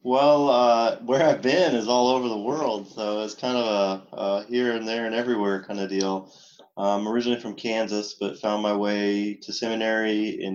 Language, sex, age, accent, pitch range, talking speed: English, male, 20-39, American, 95-115 Hz, 200 wpm